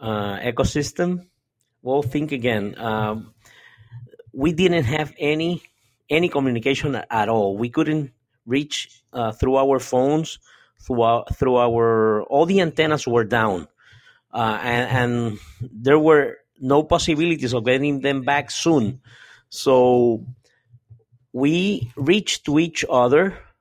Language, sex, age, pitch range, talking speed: English, male, 50-69, 115-145 Hz, 125 wpm